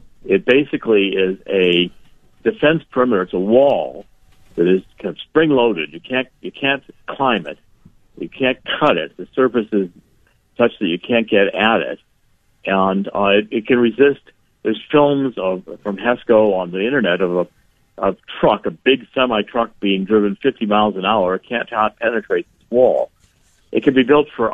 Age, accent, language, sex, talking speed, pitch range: 60-79, American, English, male, 180 wpm, 95-130 Hz